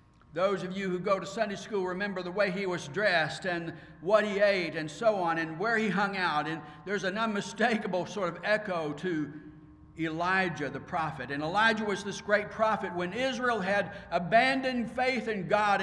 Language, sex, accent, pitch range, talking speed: English, male, American, 155-215 Hz, 190 wpm